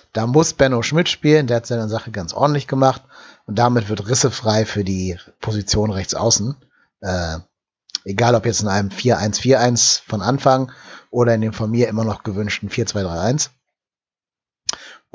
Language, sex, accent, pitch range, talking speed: German, male, German, 105-130 Hz, 160 wpm